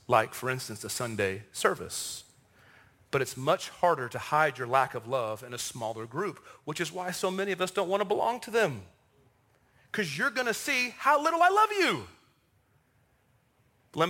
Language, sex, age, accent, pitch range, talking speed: English, male, 40-59, American, 145-245 Hz, 180 wpm